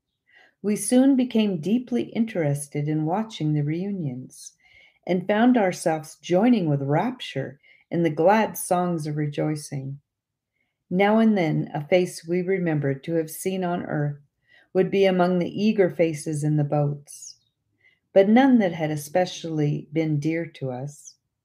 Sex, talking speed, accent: female, 145 wpm, American